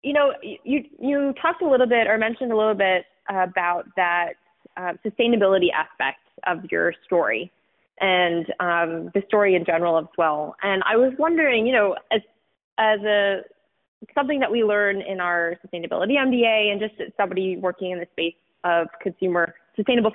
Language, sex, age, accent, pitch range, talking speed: English, female, 20-39, American, 175-230 Hz, 170 wpm